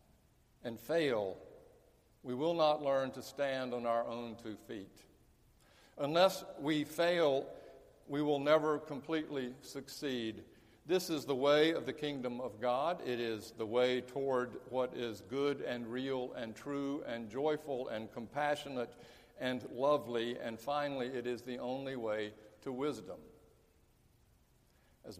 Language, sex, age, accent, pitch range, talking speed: English, male, 60-79, American, 125-160 Hz, 140 wpm